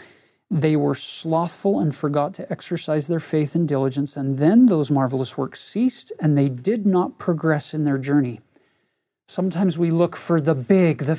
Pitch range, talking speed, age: 135-165 Hz, 170 wpm, 40-59